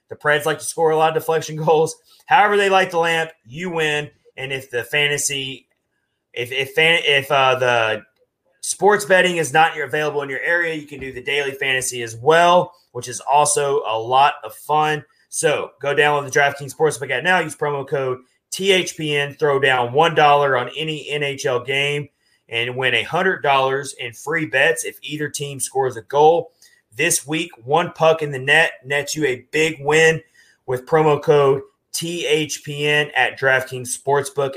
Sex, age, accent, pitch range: male, 30-49, American, 135-160 Hz